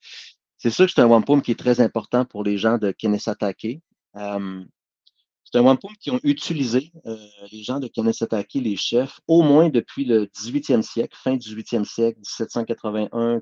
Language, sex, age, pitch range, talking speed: French, male, 40-59, 105-125 Hz, 180 wpm